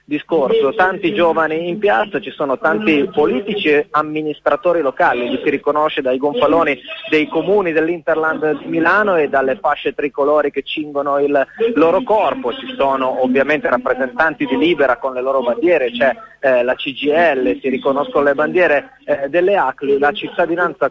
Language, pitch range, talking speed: Italian, 130-170 Hz, 160 wpm